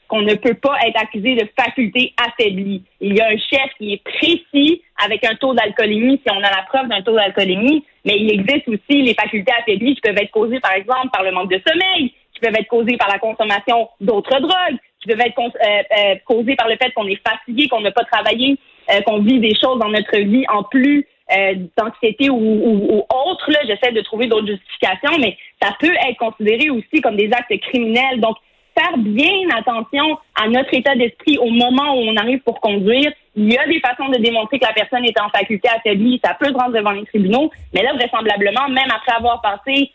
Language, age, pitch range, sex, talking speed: French, 30-49, 215-265 Hz, female, 220 wpm